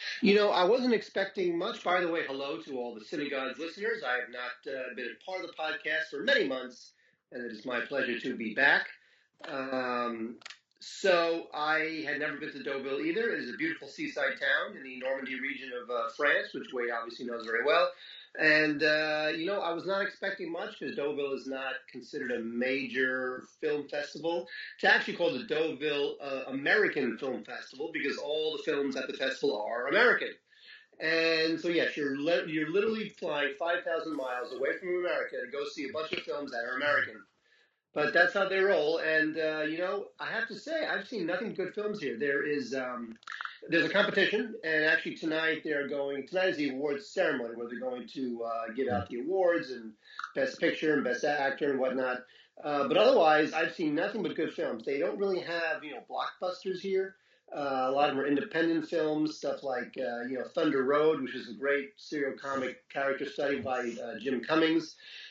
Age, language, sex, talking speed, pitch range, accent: 40-59, English, male, 200 wpm, 135-185 Hz, American